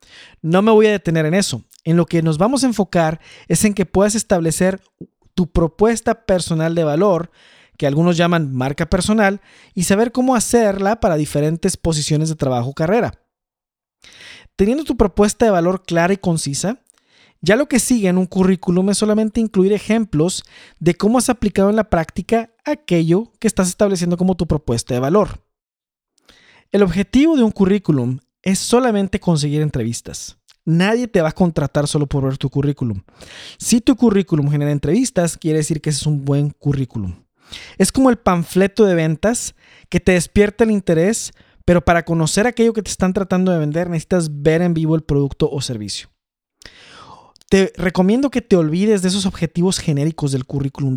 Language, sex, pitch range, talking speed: Spanish, male, 155-205 Hz, 175 wpm